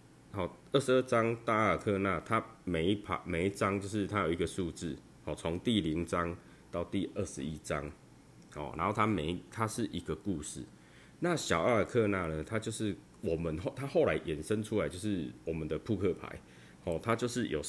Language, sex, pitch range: Chinese, male, 80-105 Hz